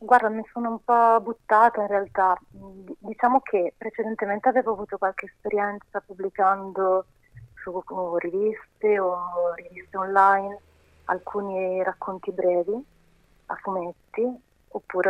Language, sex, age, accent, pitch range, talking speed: Italian, female, 30-49, native, 175-195 Hz, 105 wpm